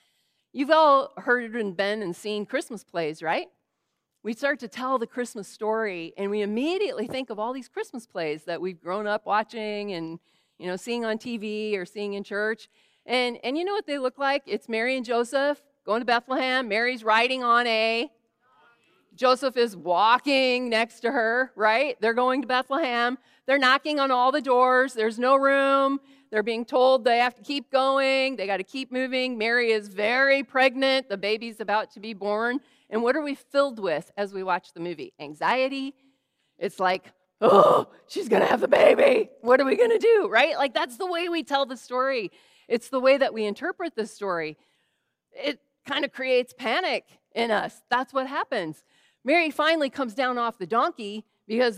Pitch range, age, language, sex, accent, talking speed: 215-270 Hz, 40-59, English, female, American, 190 wpm